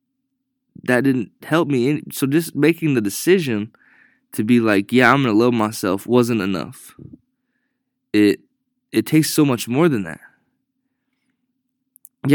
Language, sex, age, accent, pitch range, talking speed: English, male, 20-39, American, 110-175 Hz, 140 wpm